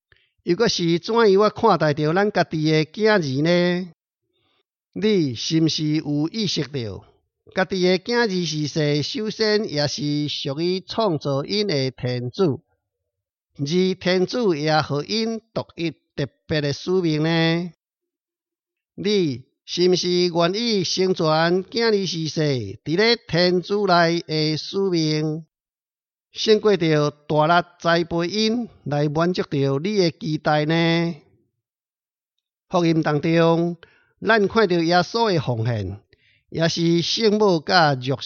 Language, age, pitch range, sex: Chinese, 50-69, 145-185 Hz, male